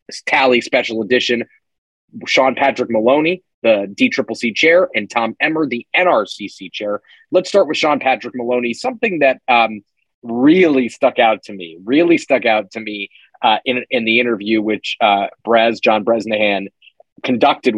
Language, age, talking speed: English, 30-49, 150 wpm